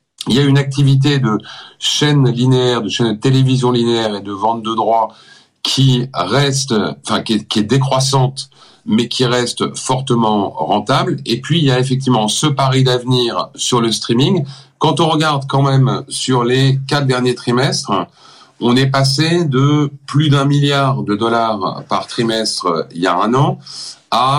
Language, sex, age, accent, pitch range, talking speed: French, male, 40-59, French, 115-140 Hz, 170 wpm